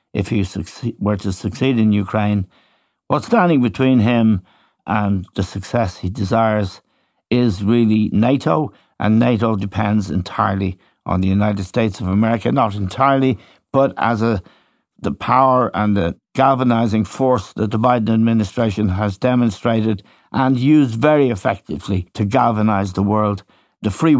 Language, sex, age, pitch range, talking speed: English, male, 60-79, 100-120 Hz, 140 wpm